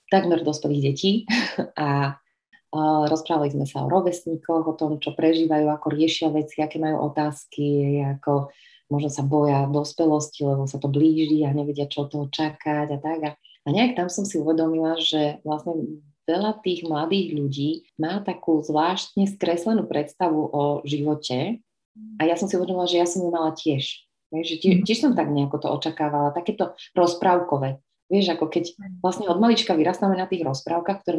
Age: 30-49